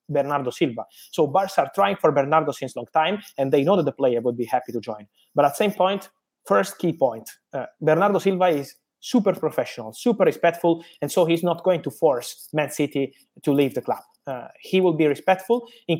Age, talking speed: 20-39, 215 wpm